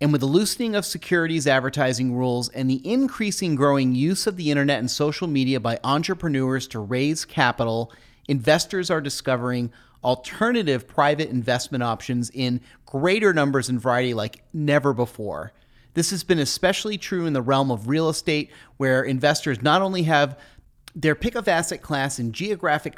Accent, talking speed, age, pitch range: American, 160 wpm, 30-49, 125-165 Hz